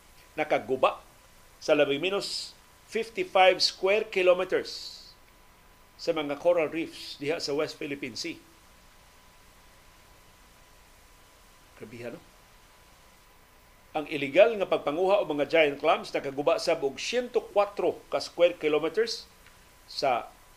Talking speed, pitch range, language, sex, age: 95 wpm, 110-165 Hz, Filipino, male, 50-69